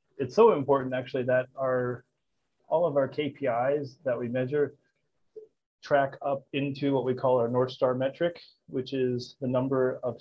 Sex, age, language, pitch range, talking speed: male, 30-49, English, 120-135 Hz, 165 wpm